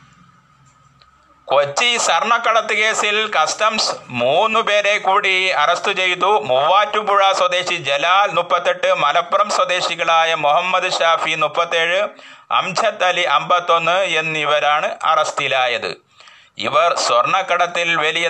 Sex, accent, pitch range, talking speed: male, native, 150-190 Hz, 80 wpm